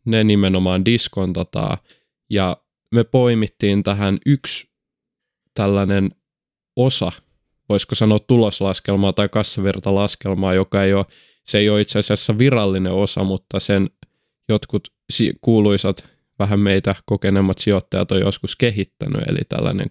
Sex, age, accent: male, 20-39, native